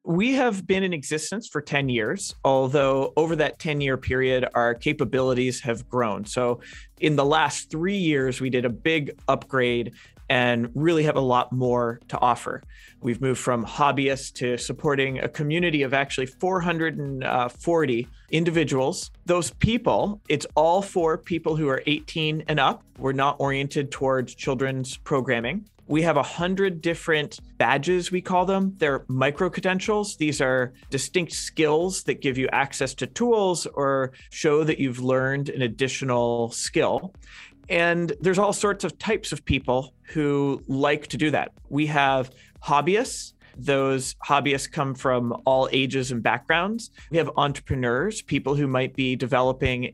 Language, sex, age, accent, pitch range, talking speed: English, male, 30-49, American, 130-155 Hz, 155 wpm